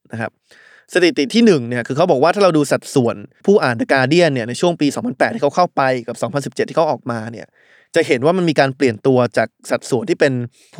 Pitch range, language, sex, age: 125-155 Hz, Thai, male, 20-39